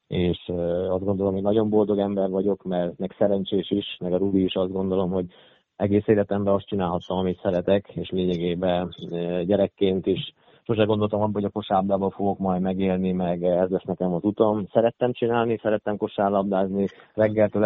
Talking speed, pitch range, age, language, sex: 165 wpm, 90-100 Hz, 20-39, Hungarian, male